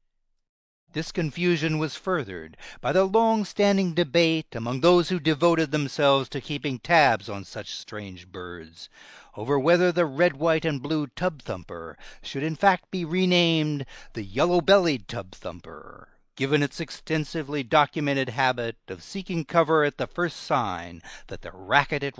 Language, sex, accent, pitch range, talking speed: English, male, American, 120-165 Hz, 130 wpm